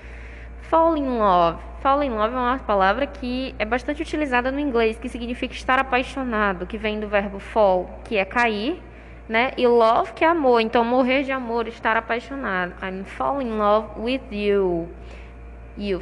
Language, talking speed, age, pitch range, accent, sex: English, 170 wpm, 10-29, 210-265 Hz, Brazilian, female